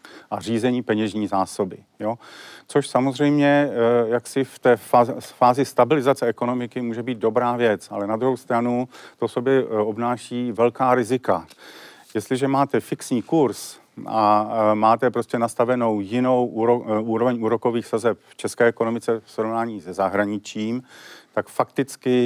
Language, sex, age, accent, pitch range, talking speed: Czech, male, 50-69, native, 110-125 Hz, 130 wpm